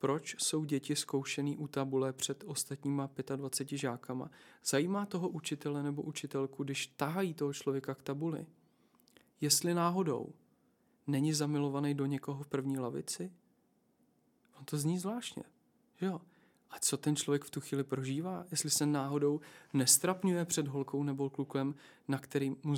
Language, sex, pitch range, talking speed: Czech, male, 135-150 Hz, 145 wpm